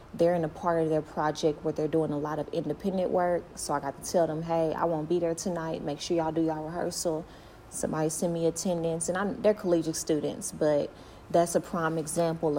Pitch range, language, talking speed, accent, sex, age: 155-175 Hz, English, 220 wpm, American, female, 30-49